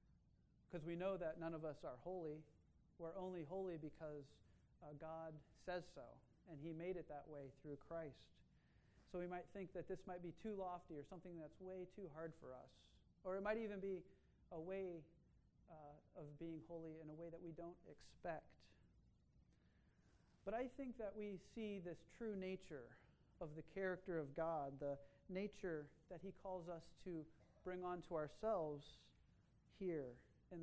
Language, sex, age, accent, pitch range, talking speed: English, male, 40-59, American, 150-185 Hz, 170 wpm